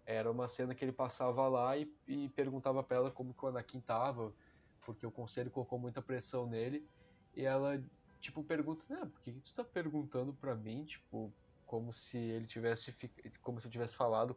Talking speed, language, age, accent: 190 wpm, Portuguese, 10-29, Brazilian